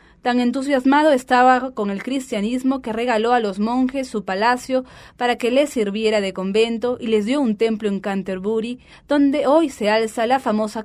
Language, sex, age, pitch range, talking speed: English, female, 20-39, 205-260 Hz, 175 wpm